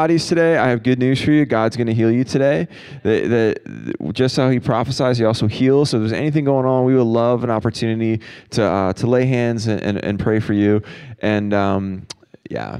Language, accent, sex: English, American, male